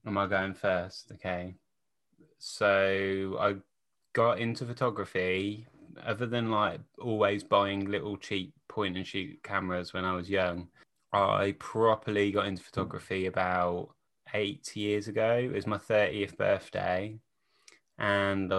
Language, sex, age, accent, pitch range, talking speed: English, male, 20-39, British, 95-105 Hz, 130 wpm